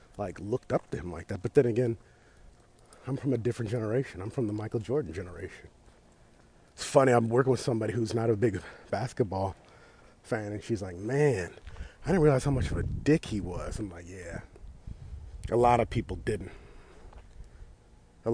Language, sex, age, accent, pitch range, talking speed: English, male, 40-59, American, 95-120 Hz, 185 wpm